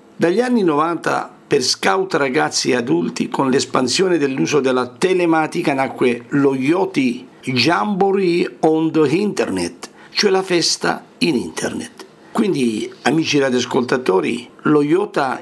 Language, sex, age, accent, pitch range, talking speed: Italian, male, 50-69, native, 130-195 Hz, 115 wpm